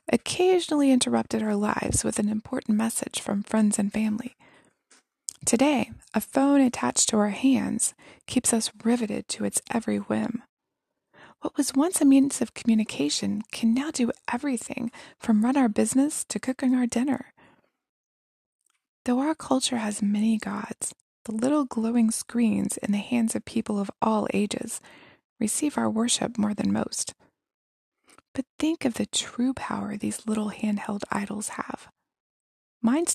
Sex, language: female, English